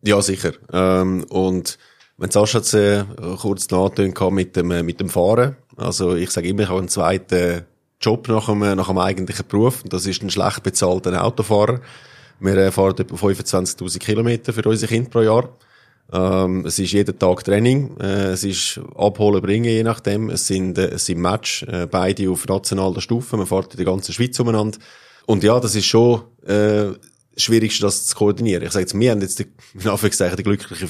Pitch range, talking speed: 95-110 Hz, 190 wpm